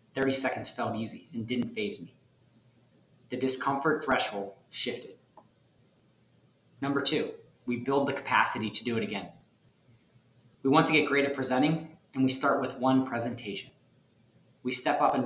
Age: 30-49